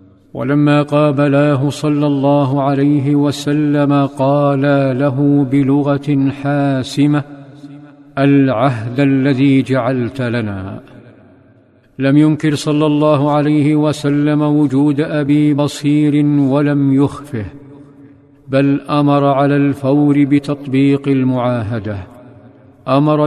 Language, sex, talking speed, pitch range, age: Arabic, male, 85 wpm, 135-150 Hz, 50-69